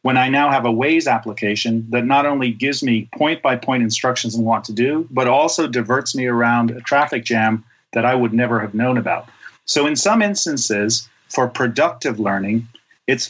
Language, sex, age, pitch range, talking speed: English, male, 40-59, 115-150 Hz, 195 wpm